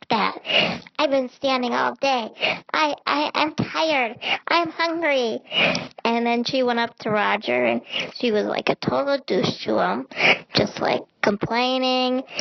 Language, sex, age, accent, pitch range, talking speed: English, male, 30-49, American, 215-255 Hz, 155 wpm